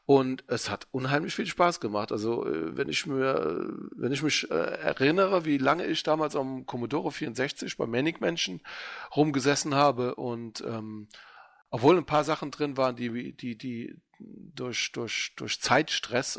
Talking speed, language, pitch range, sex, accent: 155 wpm, German, 110-135 Hz, male, German